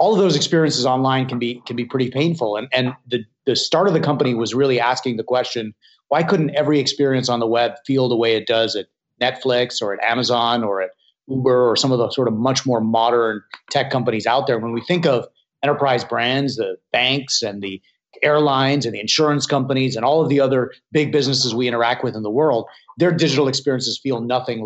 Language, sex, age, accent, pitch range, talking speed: English, male, 30-49, American, 115-145 Hz, 220 wpm